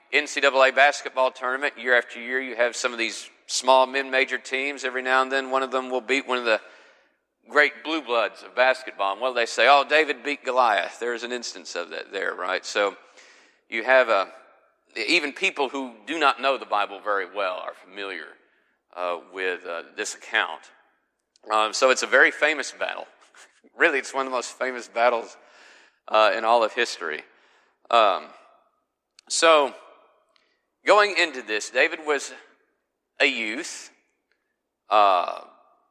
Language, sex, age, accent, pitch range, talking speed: English, male, 50-69, American, 120-145 Hz, 160 wpm